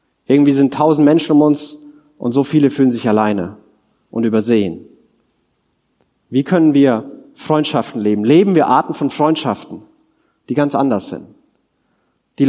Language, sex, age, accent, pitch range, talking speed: German, male, 30-49, German, 120-155 Hz, 140 wpm